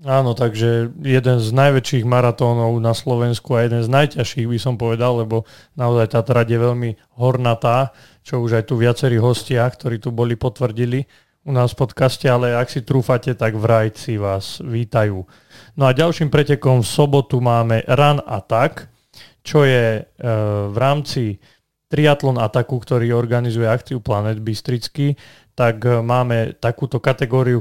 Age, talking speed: 30-49, 150 wpm